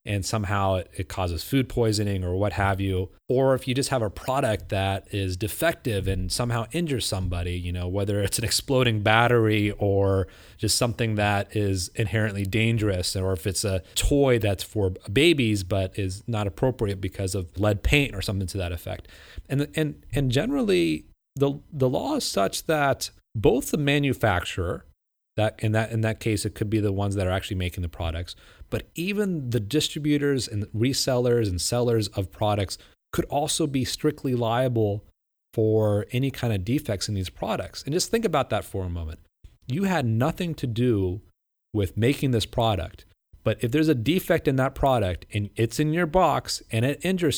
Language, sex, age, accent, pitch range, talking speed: English, male, 30-49, American, 100-135 Hz, 185 wpm